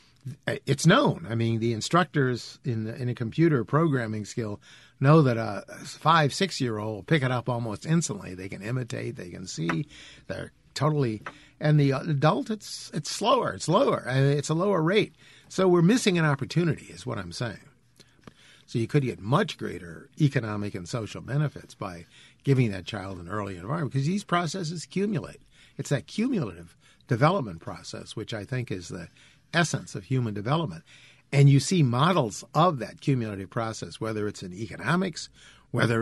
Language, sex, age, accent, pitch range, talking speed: English, male, 50-69, American, 110-150 Hz, 165 wpm